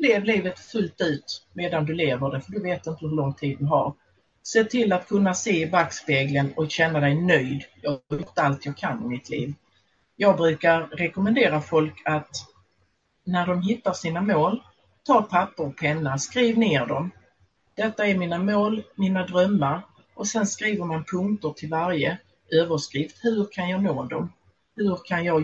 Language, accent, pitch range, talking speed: Swedish, native, 145-200 Hz, 180 wpm